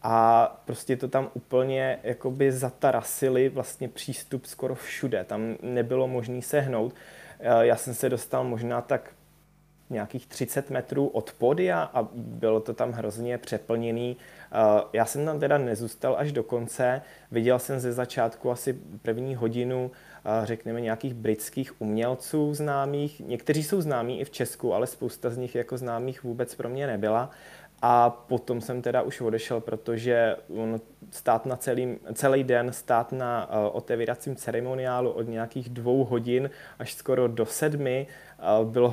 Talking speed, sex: 145 wpm, male